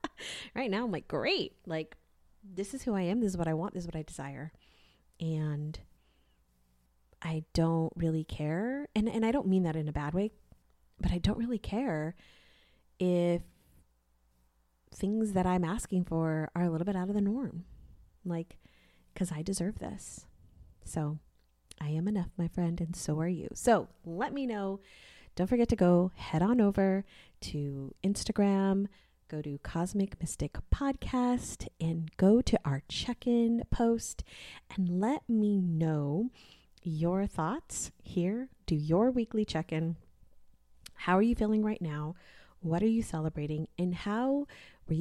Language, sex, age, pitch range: English, female, 30-49, 150-210 Hz